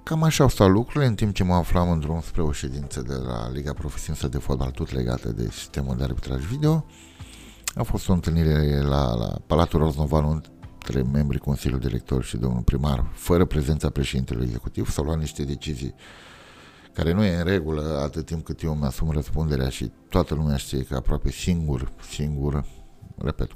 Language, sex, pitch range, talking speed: Romanian, male, 70-85 Hz, 180 wpm